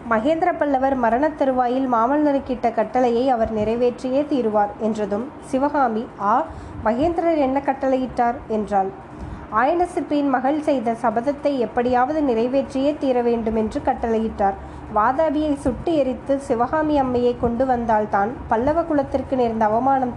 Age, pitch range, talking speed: 20-39, 230-275 Hz, 110 wpm